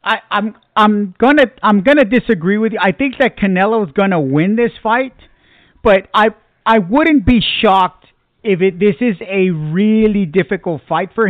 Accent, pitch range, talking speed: American, 175-225 Hz, 175 wpm